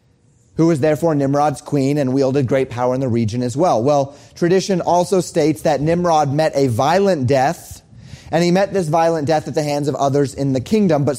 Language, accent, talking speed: English, American, 210 wpm